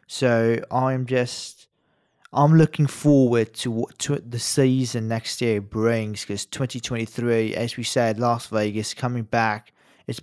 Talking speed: 135 wpm